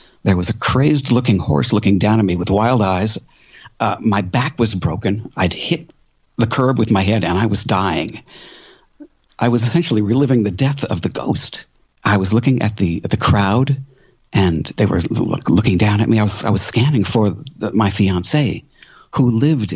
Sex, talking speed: male, 195 wpm